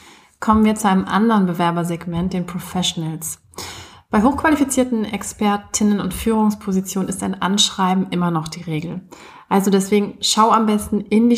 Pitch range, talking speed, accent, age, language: 180-210 Hz, 140 wpm, German, 30-49, German